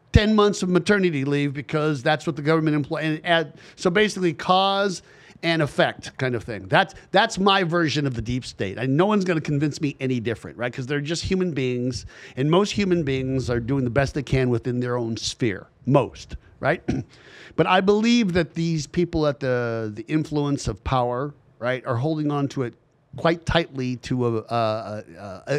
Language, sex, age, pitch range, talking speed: English, male, 50-69, 130-175 Hz, 190 wpm